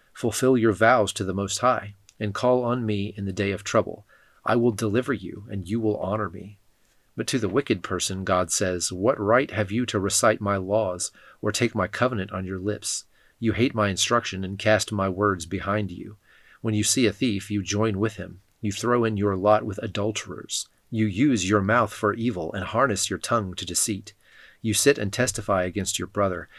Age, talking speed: 40-59, 210 wpm